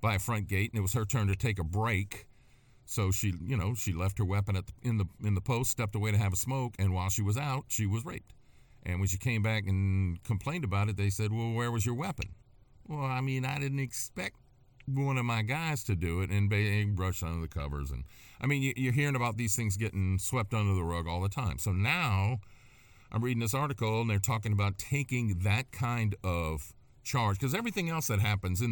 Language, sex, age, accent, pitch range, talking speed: English, male, 50-69, American, 95-120 Hz, 240 wpm